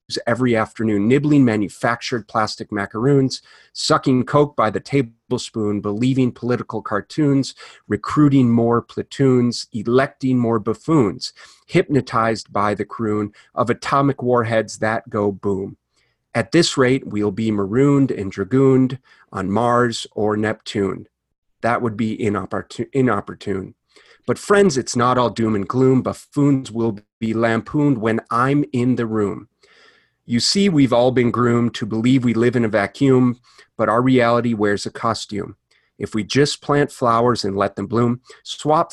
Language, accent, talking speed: English, American, 145 wpm